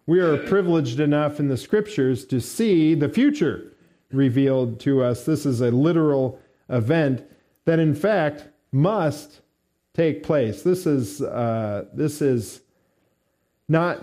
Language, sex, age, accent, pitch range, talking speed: English, male, 40-59, American, 115-150 Hz, 135 wpm